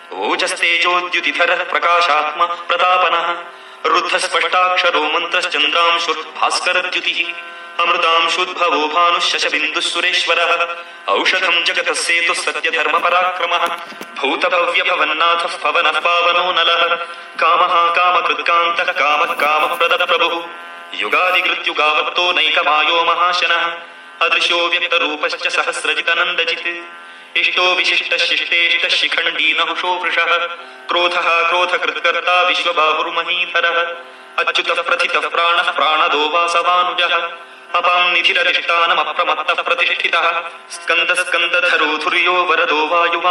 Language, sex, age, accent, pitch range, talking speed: Marathi, male, 30-49, native, 170-175 Hz, 40 wpm